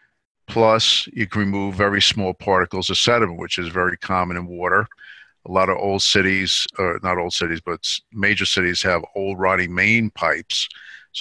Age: 50-69